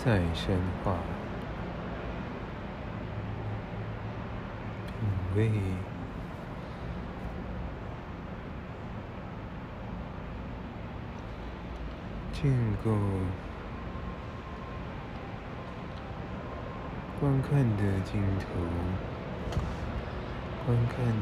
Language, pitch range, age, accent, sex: Chinese, 85-105 Hz, 60-79, American, male